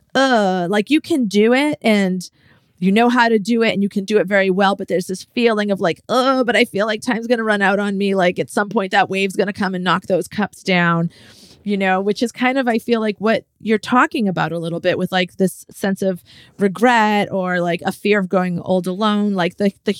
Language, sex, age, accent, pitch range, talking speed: English, female, 30-49, American, 175-225 Hz, 250 wpm